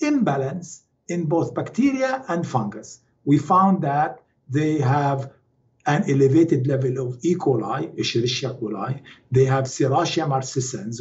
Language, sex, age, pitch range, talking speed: English, male, 50-69, 130-175 Hz, 125 wpm